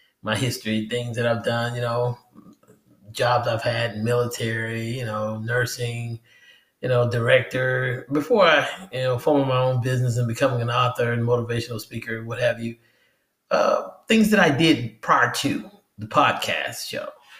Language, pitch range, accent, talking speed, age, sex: English, 115-165 Hz, American, 160 wpm, 30-49, male